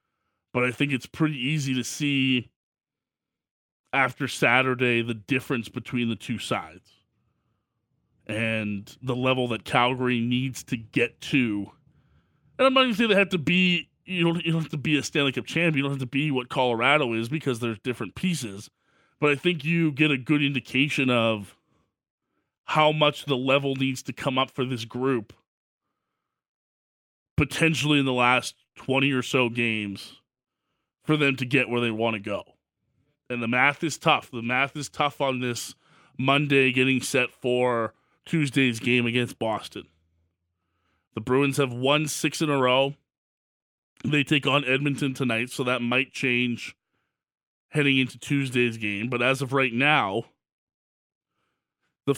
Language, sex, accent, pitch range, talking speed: English, male, American, 120-145 Hz, 160 wpm